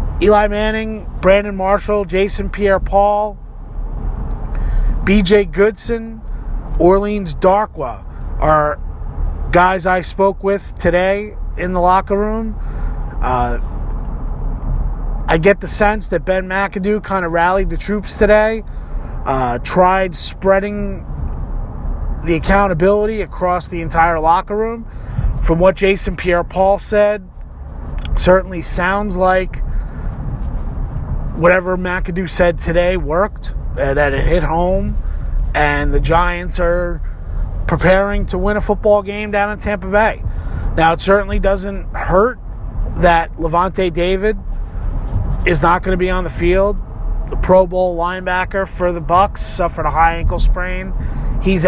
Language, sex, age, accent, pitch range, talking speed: English, male, 30-49, American, 150-195 Hz, 120 wpm